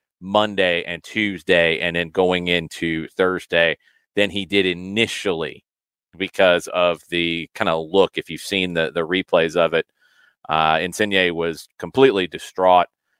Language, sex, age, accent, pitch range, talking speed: English, male, 30-49, American, 90-135 Hz, 140 wpm